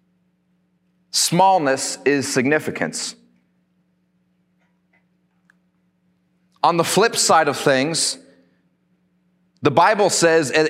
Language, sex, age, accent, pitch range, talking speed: English, male, 30-49, American, 150-180 Hz, 65 wpm